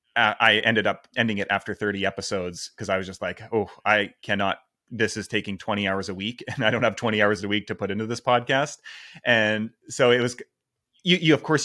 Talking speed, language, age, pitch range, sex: 225 wpm, English, 30-49, 100-125 Hz, male